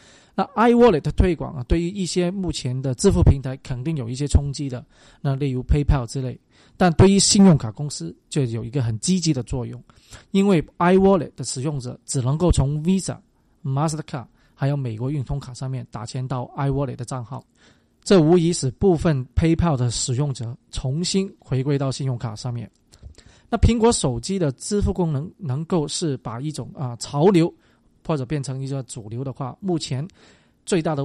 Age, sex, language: 20-39, male, Chinese